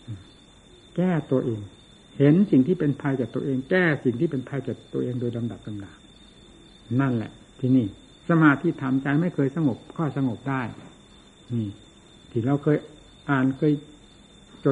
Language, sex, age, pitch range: Thai, male, 60-79, 130-170 Hz